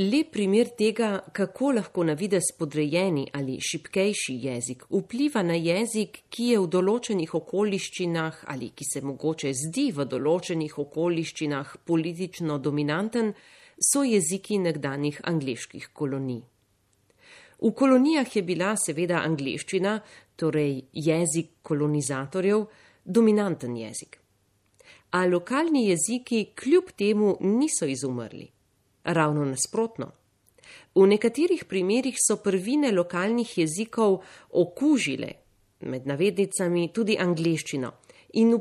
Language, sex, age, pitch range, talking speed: Italian, female, 40-59, 150-215 Hz, 100 wpm